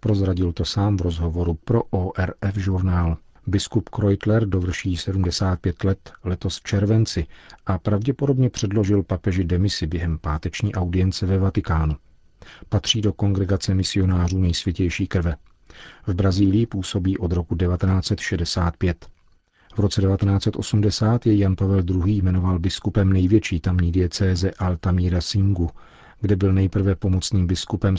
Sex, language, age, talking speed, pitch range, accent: male, Czech, 40-59, 120 wpm, 90-105 Hz, native